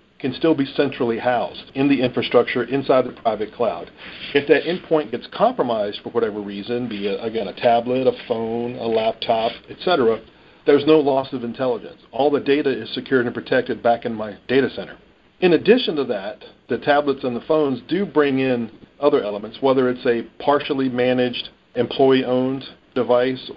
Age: 50-69